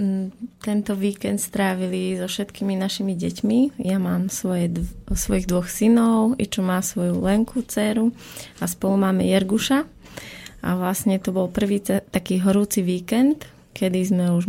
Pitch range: 185-210 Hz